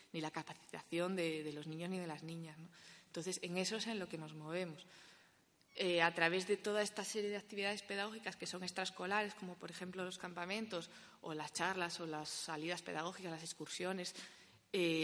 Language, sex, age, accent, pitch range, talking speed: Spanish, female, 20-39, Spanish, 170-205 Hz, 195 wpm